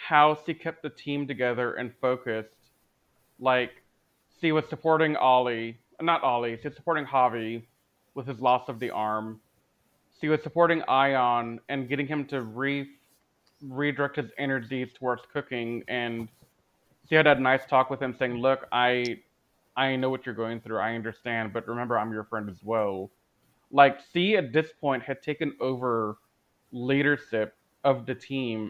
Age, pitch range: 30-49, 115-145 Hz